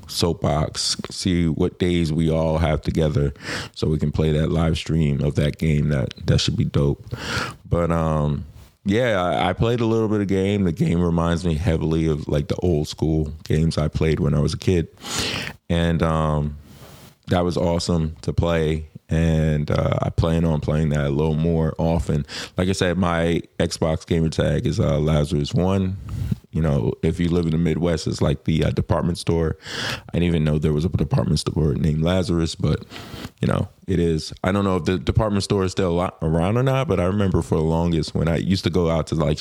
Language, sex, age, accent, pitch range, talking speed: English, male, 30-49, American, 80-95 Hz, 210 wpm